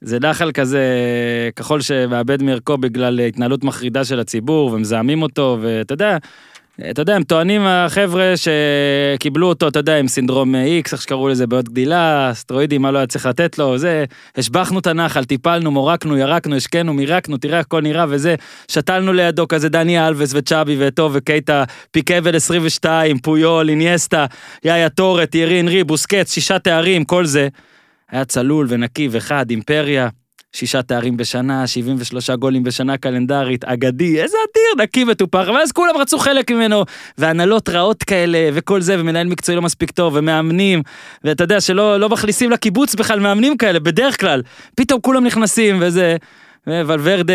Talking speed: 145 wpm